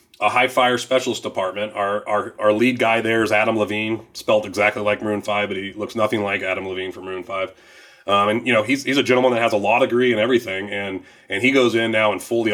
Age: 30-49